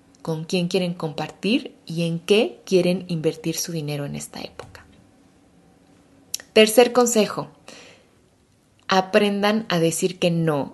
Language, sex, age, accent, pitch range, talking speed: Spanish, female, 20-39, Mexican, 170-215 Hz, 115 wpm